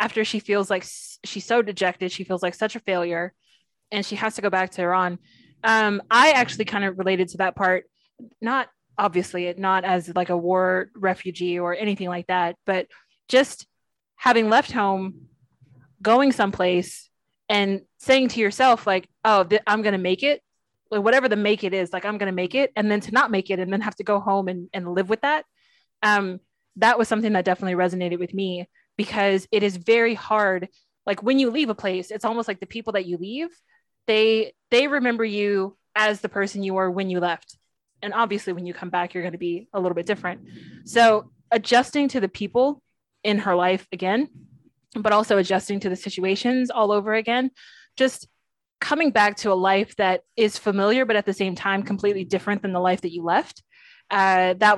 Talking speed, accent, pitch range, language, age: 200 wpm, American, 185-220 Hz, English, 20-39